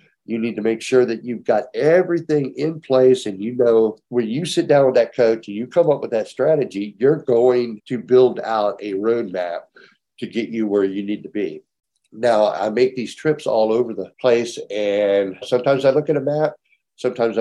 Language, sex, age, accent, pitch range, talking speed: English, male, 60-79, American, 105-135 Hz, 205 wpm